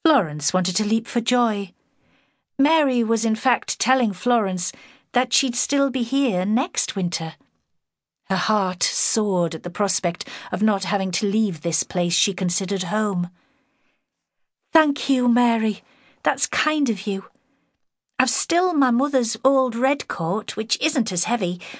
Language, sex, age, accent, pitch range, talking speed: English, female, 50-69, British, 180-240 Hz, 145 wpm